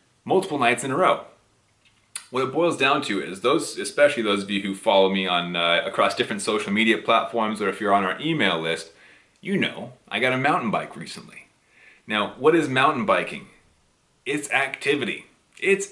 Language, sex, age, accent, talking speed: English, male, 30-49, American, 185 wpm